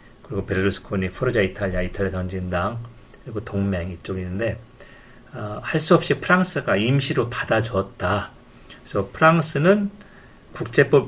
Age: 40-59